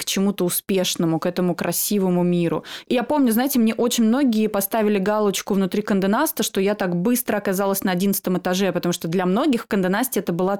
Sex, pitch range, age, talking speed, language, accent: female, 180-230 Hz, 20-39, 180 wpm, Russian, native